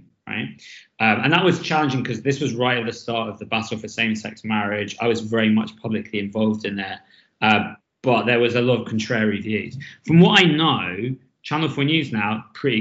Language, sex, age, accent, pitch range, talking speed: English, male, 20-39, British, 110-140 Hz, 210 wpm